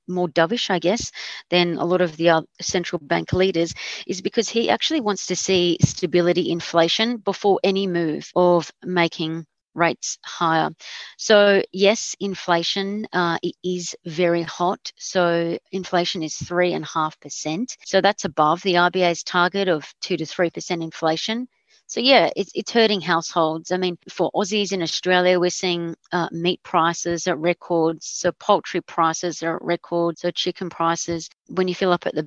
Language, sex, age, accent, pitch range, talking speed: English, female, 40-59, Australian, 165-190 Hz, 160 wpm